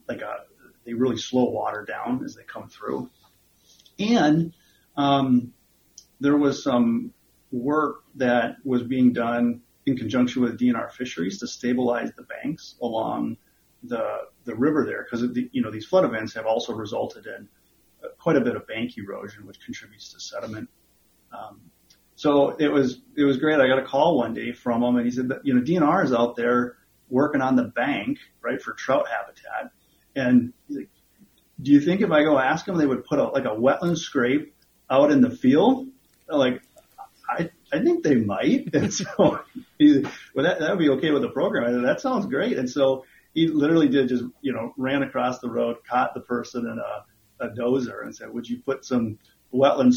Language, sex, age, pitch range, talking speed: English, male, 30-49, 125-185 Hz, 195 wpm